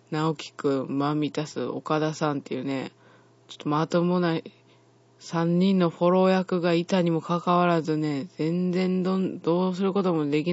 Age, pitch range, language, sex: 20-39, 140-165 Hz, Japanese, female